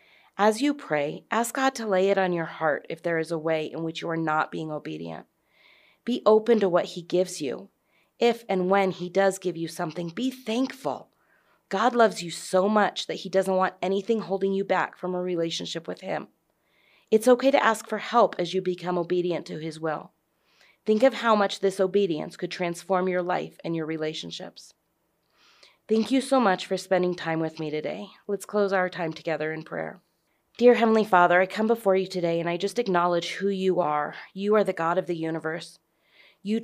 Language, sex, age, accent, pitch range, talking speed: English, female, 30-49, American, 170-200 Hz, 205 wpm